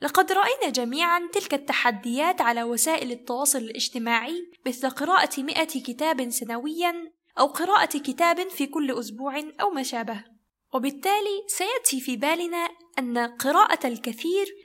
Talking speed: 125 wpm